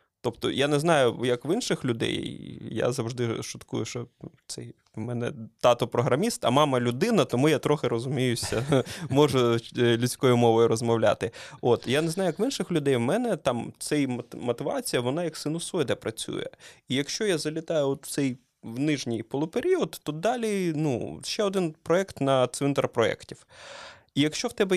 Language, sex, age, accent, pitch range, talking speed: Ukrainian, male, 20-39, native, 115-155 Hz, 160 wpm